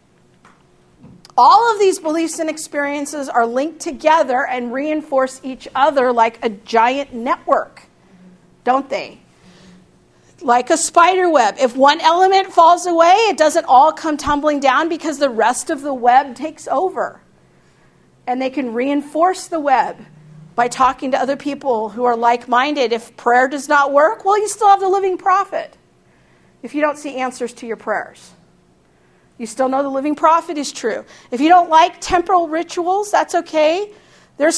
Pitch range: 250-330 Hz